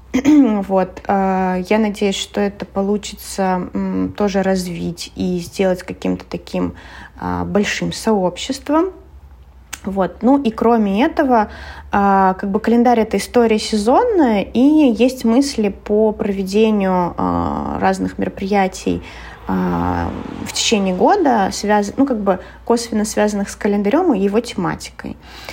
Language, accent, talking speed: Russian, native, 110 wpm